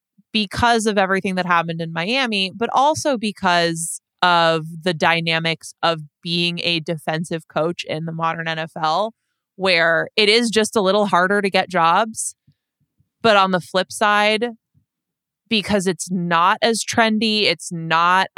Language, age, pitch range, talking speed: English, 20-39, 170-210 Hz, 145 wpm